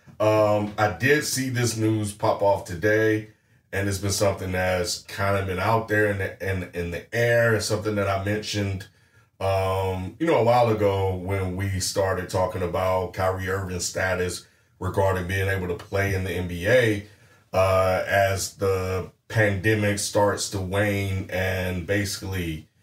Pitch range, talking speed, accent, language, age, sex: 95-115 Hz, 160 wpm, American, English, 30-49, male